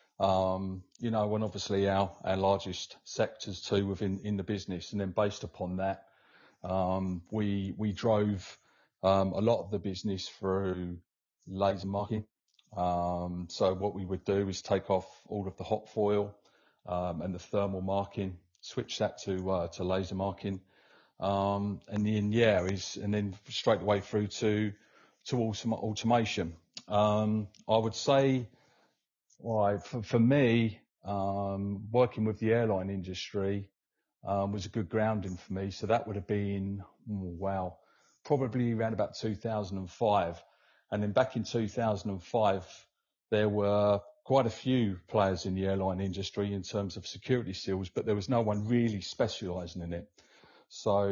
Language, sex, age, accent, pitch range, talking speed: English, male, 30-49, British, 95-110 Hz, 155 wpm